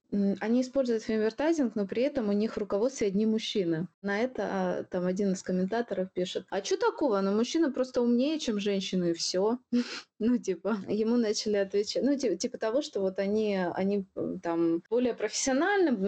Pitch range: 175-225 Hz